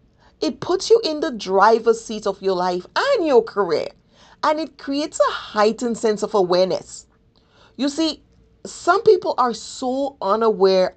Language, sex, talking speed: English, female, 155 wpm